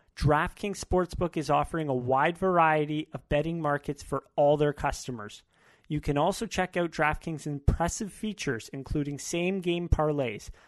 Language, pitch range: English, 140-165 Hz